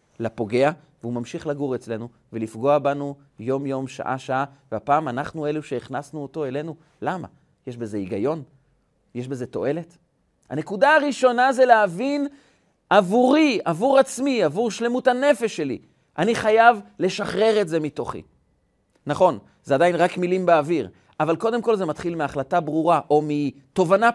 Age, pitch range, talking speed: 40-59, 145-205 Hz, 135 wpm